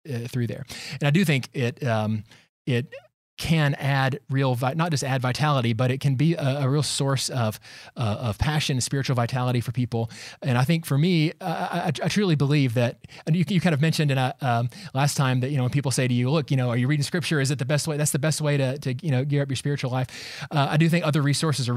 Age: 20-39